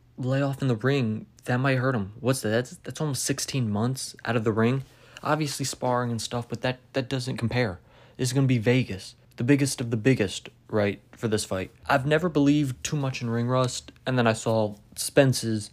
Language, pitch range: English, 110-130 Hz